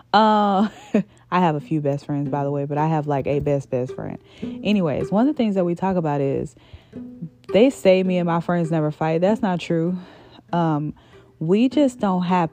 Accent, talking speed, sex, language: American, 210 wpm, female, English